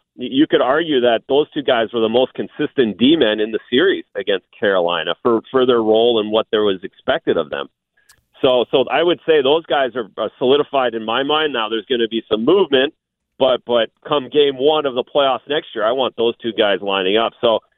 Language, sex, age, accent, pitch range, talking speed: English, male, 40-59, American, 115-150 Hz, 220 wpm